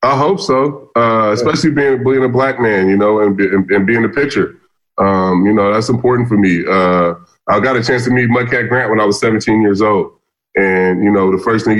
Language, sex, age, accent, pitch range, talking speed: English, female, 20-39, American, 100-120 Hz, 235 wpm